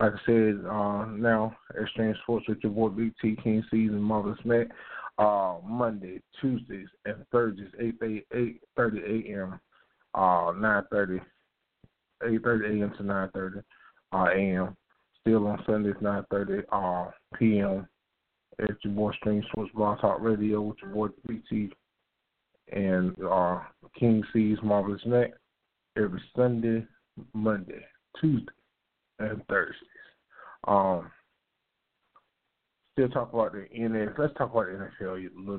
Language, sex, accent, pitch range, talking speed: English, male, American, 95-110 Hz, 140 wpm